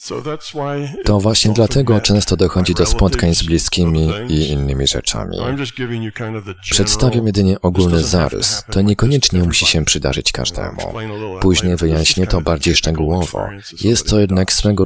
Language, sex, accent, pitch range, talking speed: Polish, male, native, 85-105 Hz, 125 wpm